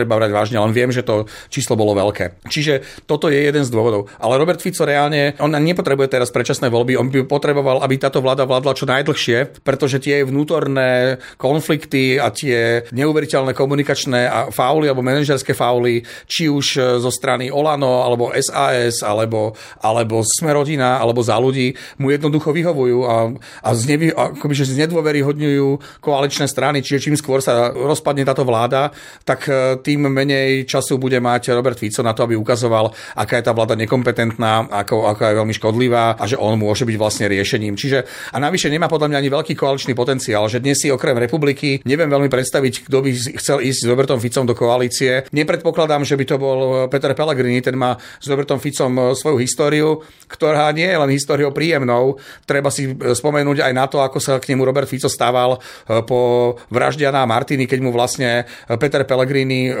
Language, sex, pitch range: Slovak, male, 120-145 Hz